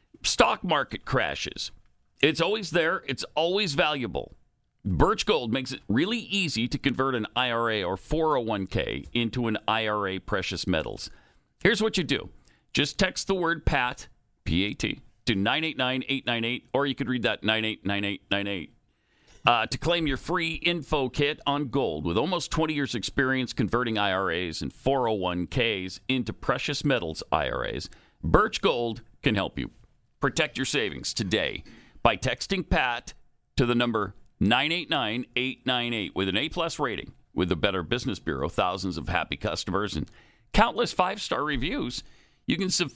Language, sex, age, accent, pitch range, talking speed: English, male, 50-69, American, 105-155 Hz, 140 wpm